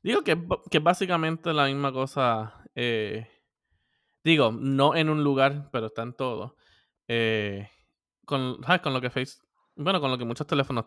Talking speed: 165 wpm